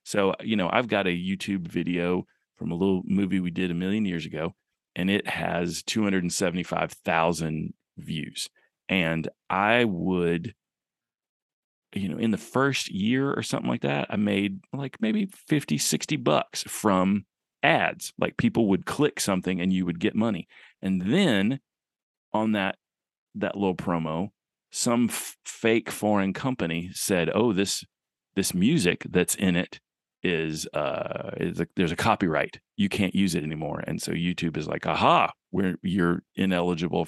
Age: 40-59